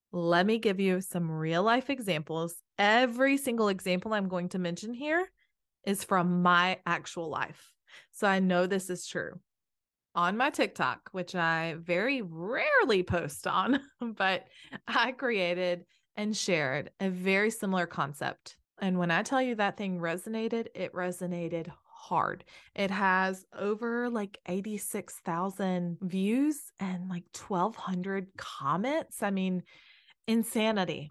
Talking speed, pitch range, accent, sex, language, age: 135 wpm, 180-230 Hz, American, female, English, 20-39